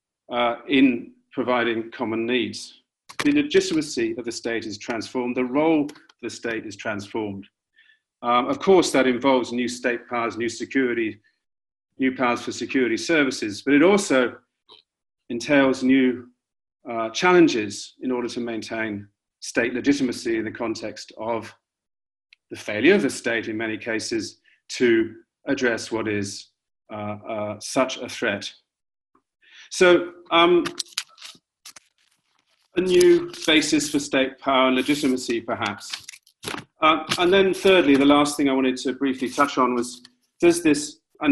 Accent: British